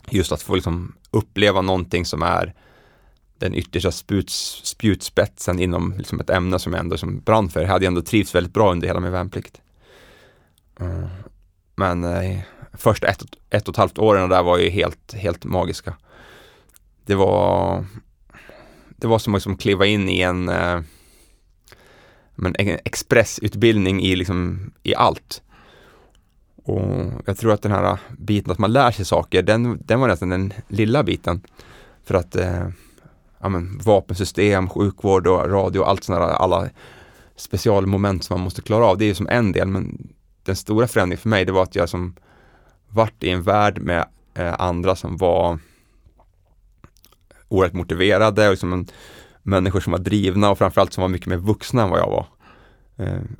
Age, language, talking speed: 30-49, Swedish, 175 wpm